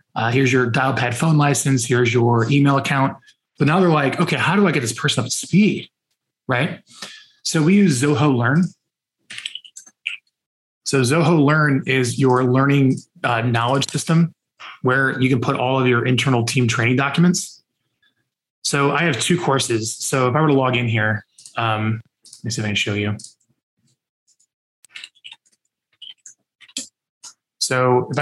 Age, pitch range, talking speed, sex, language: 20-39, 120-150 Hz, 160 wpm, male, English